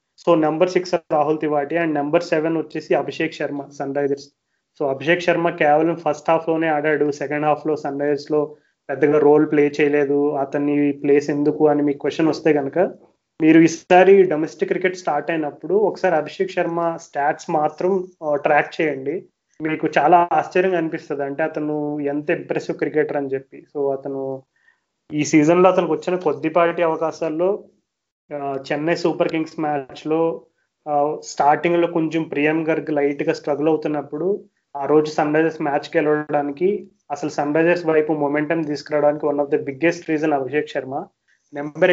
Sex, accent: male, native